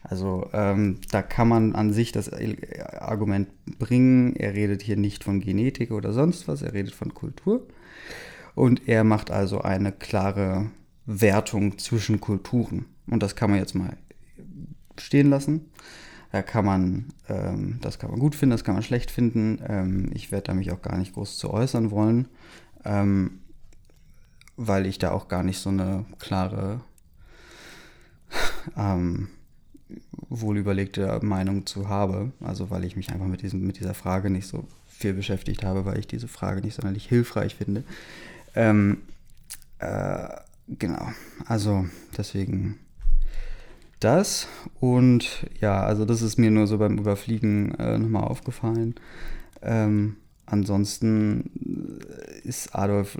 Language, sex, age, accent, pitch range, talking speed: German, male, 20-39, German, 95-110 Hz, 140 wpm